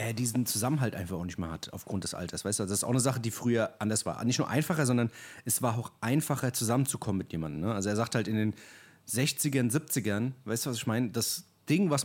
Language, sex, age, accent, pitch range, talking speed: German, male, 30-49, German, 115-150 Hz, 250 wpm